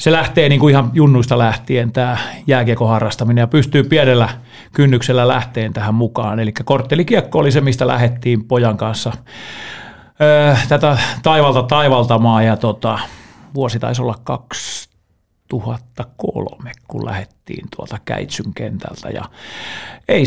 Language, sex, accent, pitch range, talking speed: Finnish, male, native, 115-140 Hz, 120 wpm